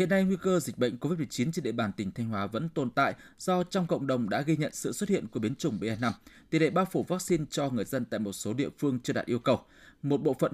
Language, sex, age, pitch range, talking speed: Vietnamese, male, 20-39, 120-175 Hz, 290 wpm